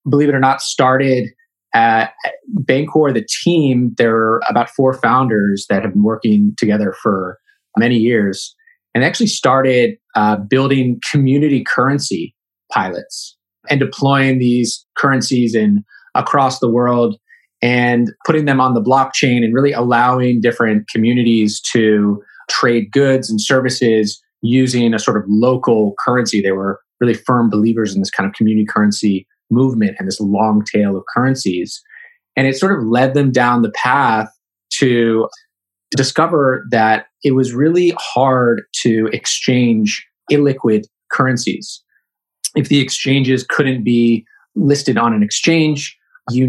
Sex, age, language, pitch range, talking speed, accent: male, 30-49, English, 110-135 Hz, 140 wpm, American